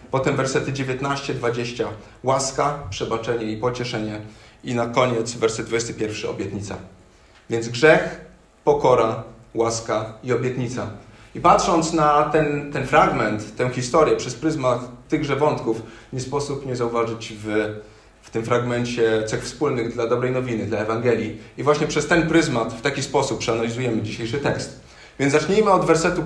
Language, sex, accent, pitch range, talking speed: Polish, male, native, 110-145 Hz, 140 wpm